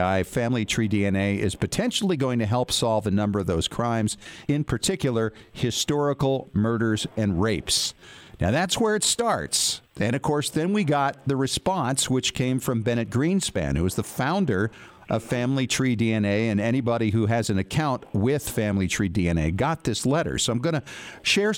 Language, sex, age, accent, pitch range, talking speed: English, male, 50-69, American, 110-140 Hz, 175 wpm